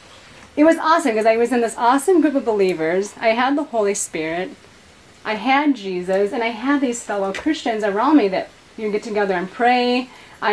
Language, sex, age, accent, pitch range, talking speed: English, female, 30-49, American, 200-260 Hz, 200 wpm